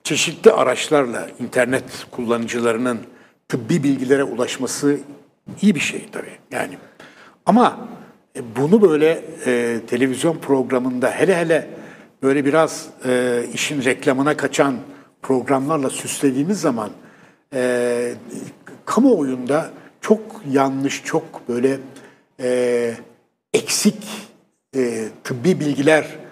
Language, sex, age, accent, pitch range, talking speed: Turkish, male, 60-79, native, 130-155 Hz, 95 wpm